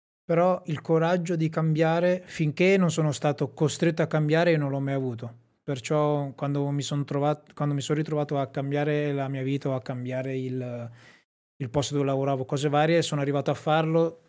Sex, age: male, 20-39